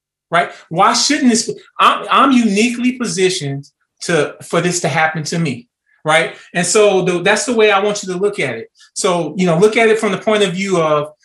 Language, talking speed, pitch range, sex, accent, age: English, 215 wpm, 180-235 Hz, male, American, 30-49